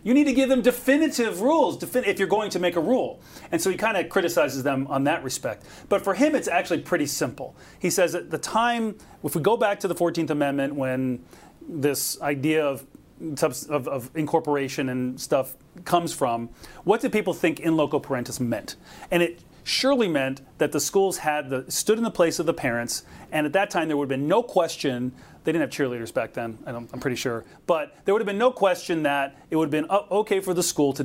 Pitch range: 135-180 Hz